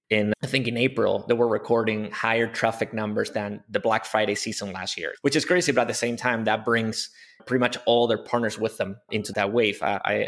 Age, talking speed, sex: 20-39, 230 wpm, male